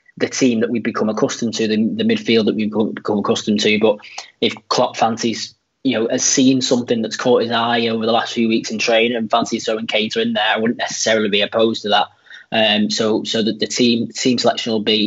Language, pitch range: English, 110-135 Hz